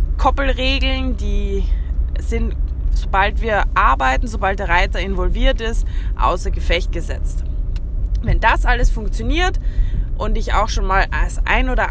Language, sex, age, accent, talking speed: German, female, 20-39, German, 130 wpm